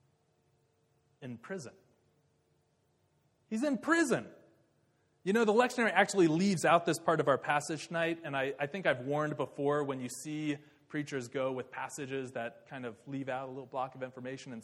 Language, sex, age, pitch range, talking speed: English, male, 30-49, 140-185 Hz, 175 wpm